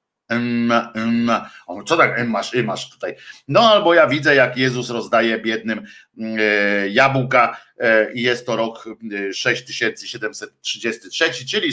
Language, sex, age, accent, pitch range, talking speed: Polish, male, 50-69, native, 115-145 Hz, 100 wpm